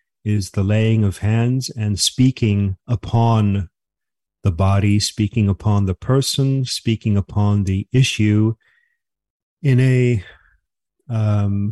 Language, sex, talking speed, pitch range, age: English, male, 110 wpm, 100-125 Hz, 50-69